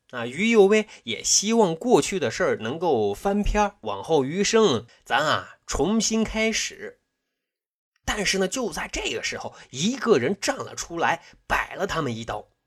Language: Chinese